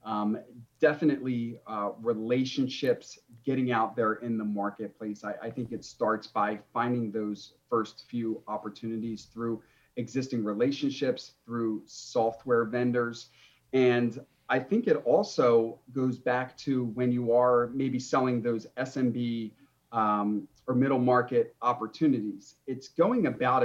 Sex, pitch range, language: male, 110-130 Hz, English